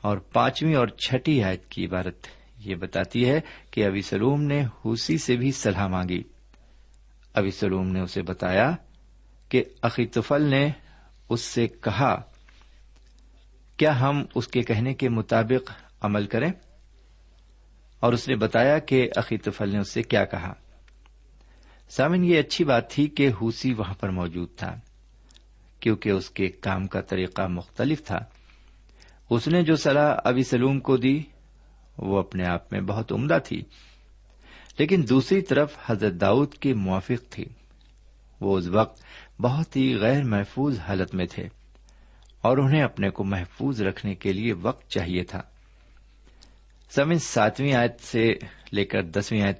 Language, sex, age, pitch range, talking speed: Urdu, male, 50-69, 95-130 Hz, 145 wpm